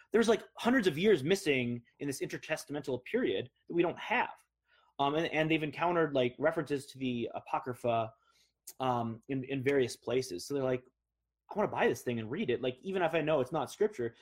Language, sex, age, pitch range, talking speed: English, male, 20-39, 120-150 Hz, 205 wpm